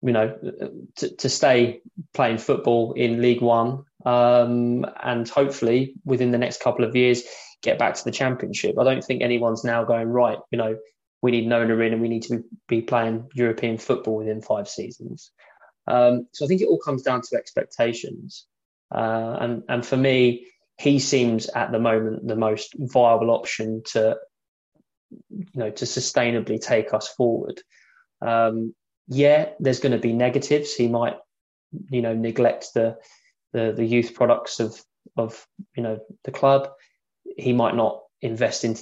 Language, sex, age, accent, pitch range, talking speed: English, male, 20-39, British, 115-125 Hz, 165 wpm